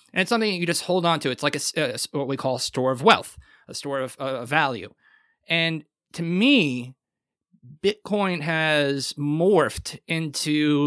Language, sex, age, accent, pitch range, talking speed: English, male, 30-49, American, 140-180 Hz, 175 wpm